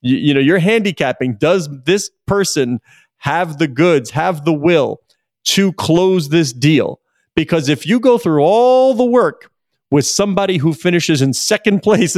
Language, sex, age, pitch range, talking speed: English, male, 40-59, 145-190 Hz, 160 wpm